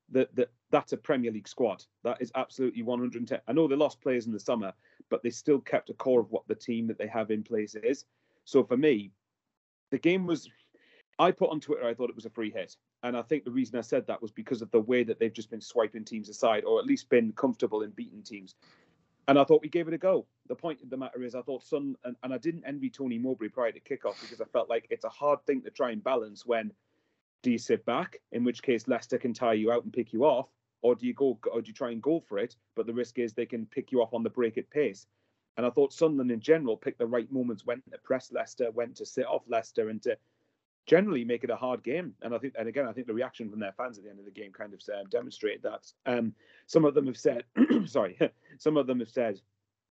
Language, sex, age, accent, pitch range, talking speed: English, male, 30-49, British, 115-140 Hz, 270 wpm